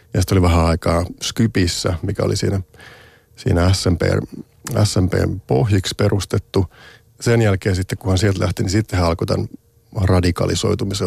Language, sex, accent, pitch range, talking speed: Finnish, male, native, 90-110 Hz, 135 wpm